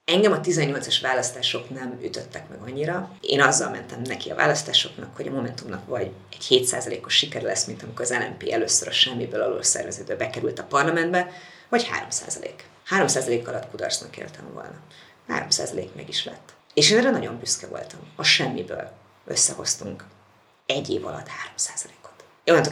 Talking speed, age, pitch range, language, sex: 155 wpm, 30-49, 125-160 Hz, Hungarian, female